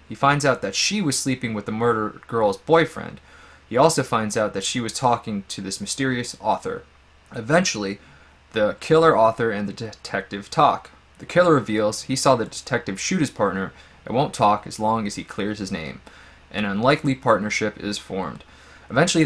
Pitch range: 100-140 Hz